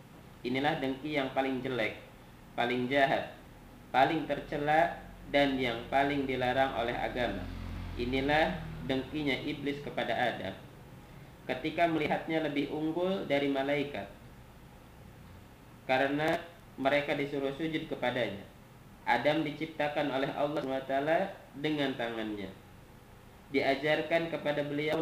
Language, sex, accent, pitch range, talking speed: Indonesian, male, native, 130-155 Hz, 100 wpm